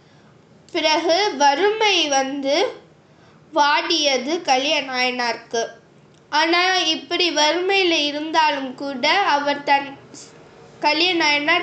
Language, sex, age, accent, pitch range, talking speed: Tamil, female, 20-39, native, 280-335 Hz, 65 wpm